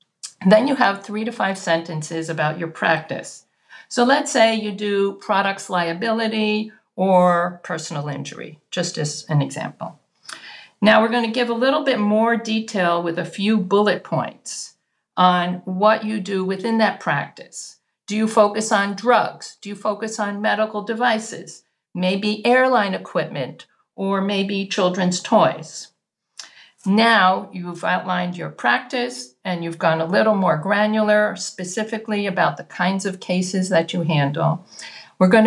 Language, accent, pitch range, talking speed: English, American, 180-220 Hz, 145 wpm